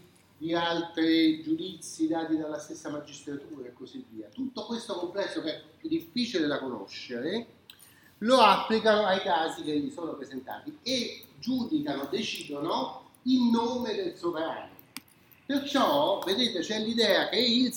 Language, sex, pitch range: Italian, male, 155-235 Hz